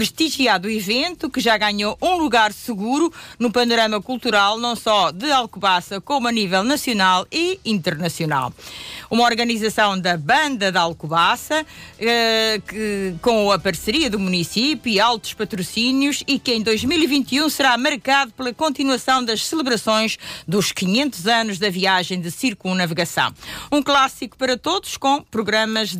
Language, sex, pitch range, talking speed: Portuguese, female, 190-250 Hz, 135 wpm